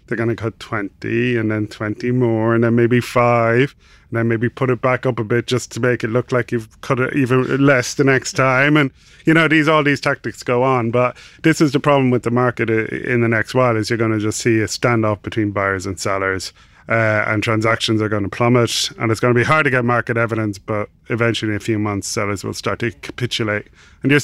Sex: male